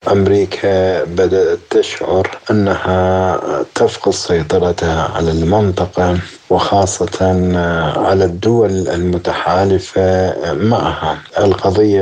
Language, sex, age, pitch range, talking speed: Arabic, male, 50-69, 90-105 Hz, 70 wpm